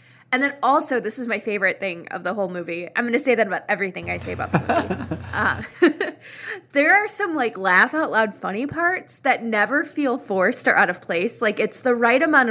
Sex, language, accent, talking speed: female, English, American, 215 wpm